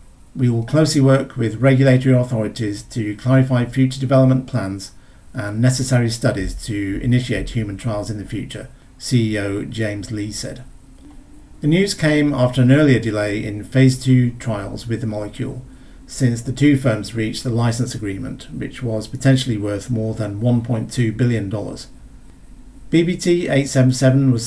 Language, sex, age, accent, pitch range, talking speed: English, male, 50-69, British, 110-130 Hz, 140 wpm